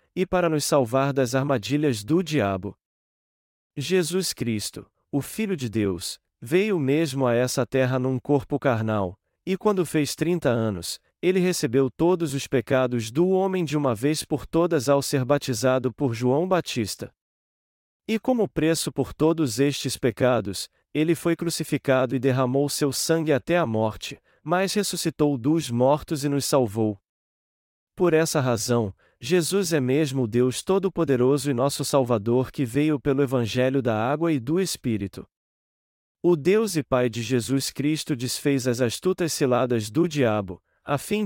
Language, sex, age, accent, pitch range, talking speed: Portuguese, male, 40-59, Brazilian, 125-160 Hz, 150 wpm